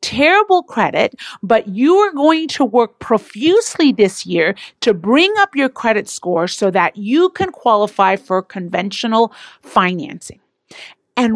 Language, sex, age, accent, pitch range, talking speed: English, female, 40-59, American, 205-310 Hz, 135 wpm